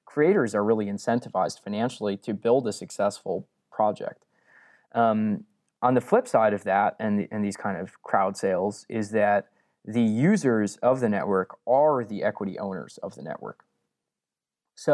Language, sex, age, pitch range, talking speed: English, male, 20-39, 110-145 Hz, 155 wpm